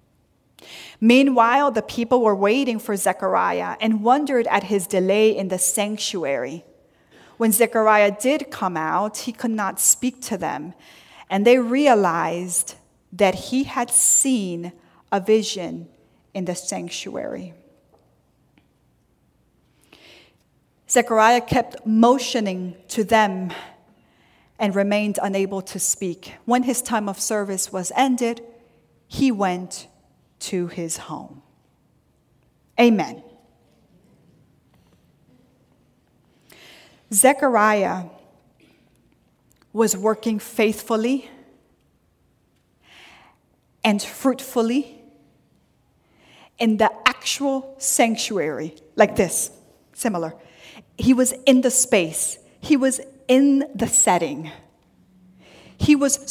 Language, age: English, 40-59